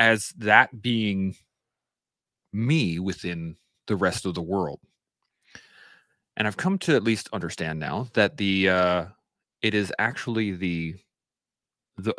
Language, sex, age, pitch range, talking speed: English, male, 30-49, 85-110 Hz, 130 wpm